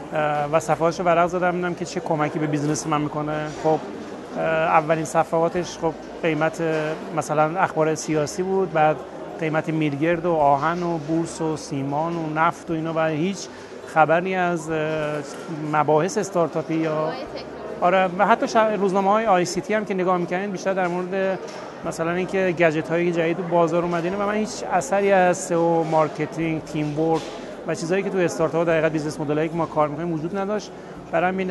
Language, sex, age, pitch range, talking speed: Persian, male, 30-49, 155-180 Hz, 160 wpm